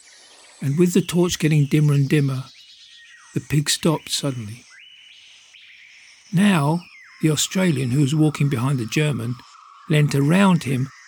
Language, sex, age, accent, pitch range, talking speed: English, male, 50-69, British, 140-170 Hz, 130 wpm